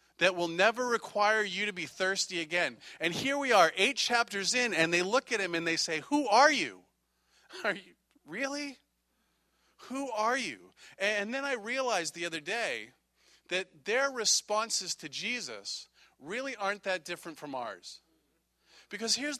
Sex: male